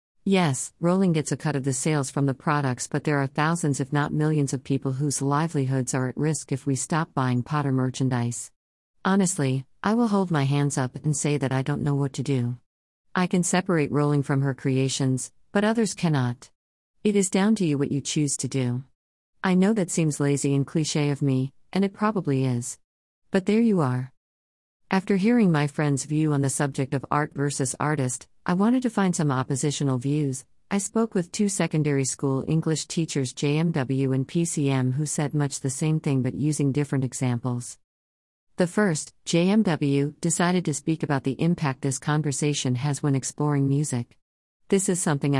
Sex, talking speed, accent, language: female, 190 wpm, American, English